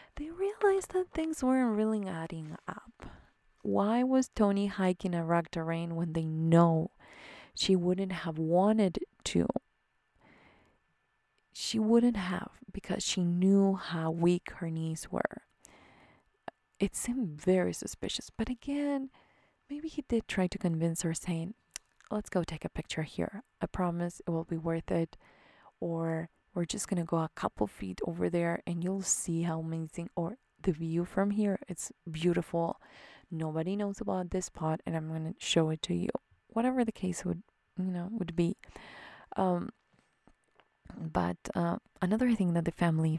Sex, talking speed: female, 155 wpm